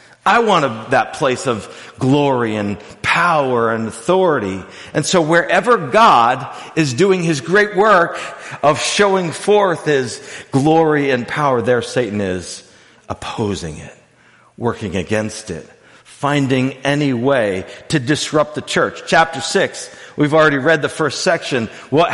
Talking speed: 135 wpm